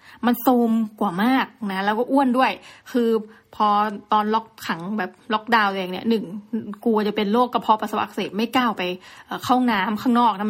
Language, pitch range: Thai, 205-245 Hz